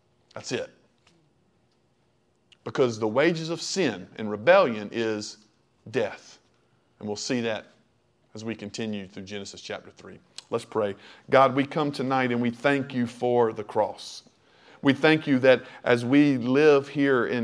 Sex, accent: male, American